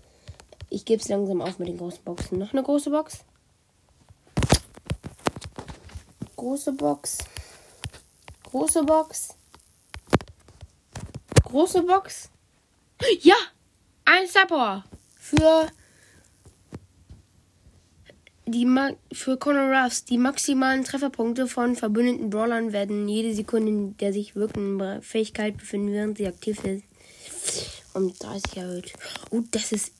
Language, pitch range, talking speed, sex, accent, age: German, 190-255 Hz, 110 wpm, female, German, 20-39